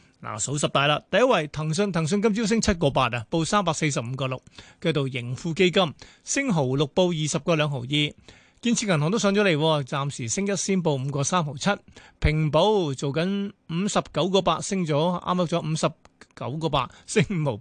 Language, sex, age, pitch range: Chinese, male, 30-49, 140-180 Hz